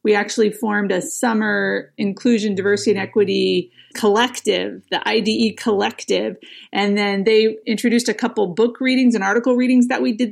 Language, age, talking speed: English, 30-49, 155 wpm